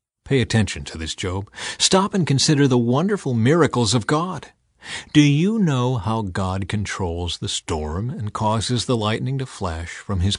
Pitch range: 105-155 Hz